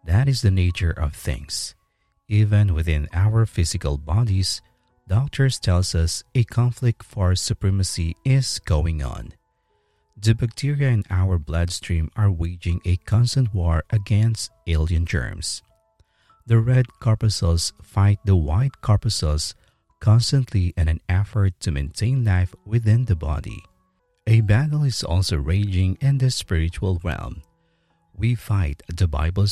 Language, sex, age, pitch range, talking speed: English, male, 50-69, 85-115 Hz, 130 wpm